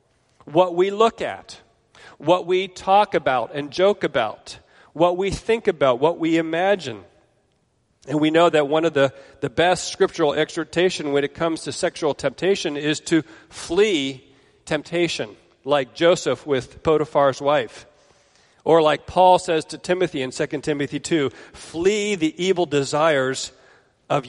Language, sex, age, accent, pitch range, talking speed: English, male, 40-59, American, 135-170 Hz, 145 wpm